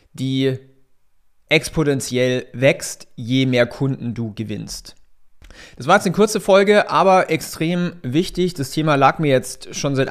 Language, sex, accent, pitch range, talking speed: German, male, German, 125-155 Hz, 140 wpm